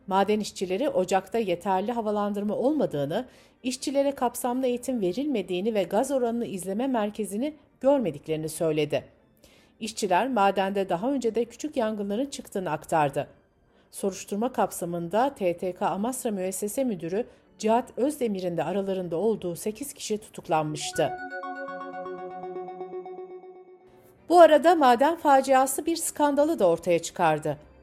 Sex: female